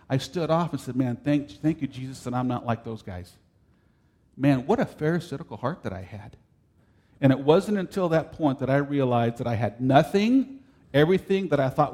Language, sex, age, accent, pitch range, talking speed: English, male, 50-69, American, 105-140 Hz, 205 wpm